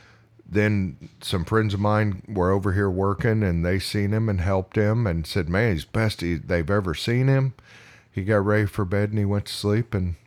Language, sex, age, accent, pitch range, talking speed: English, male, 50-69, American, 90-115 Hz, 215 wpm